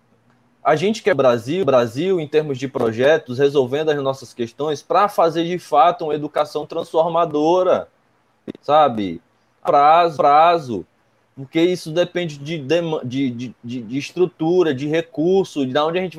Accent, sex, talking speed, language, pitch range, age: Brazilian, male, 135 wpm, Portuguese, 135-180 Hz, 20-39